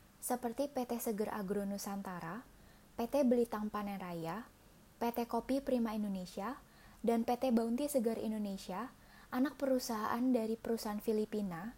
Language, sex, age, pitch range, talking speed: Indonesian, female, 10-29, 210-255 Hz, 110 wpm